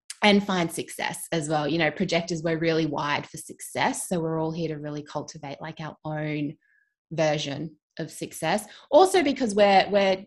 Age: 20-39